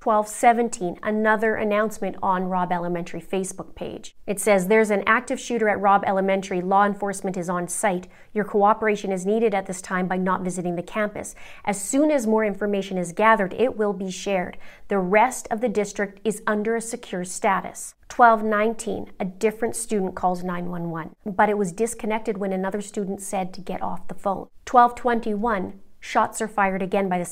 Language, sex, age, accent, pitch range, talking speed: English, female, 30-49, American, 190-220 Hz, 175 wpm